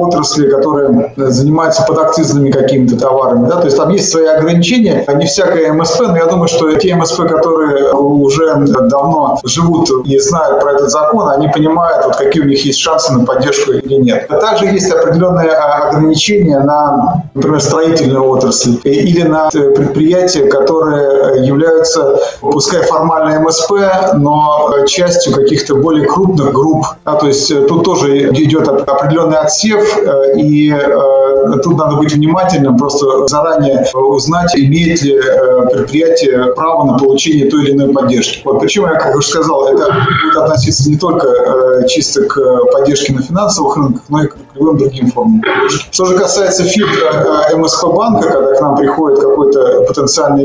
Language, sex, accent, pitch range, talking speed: Russian, male, native, 140-170 Hz, 155 wpm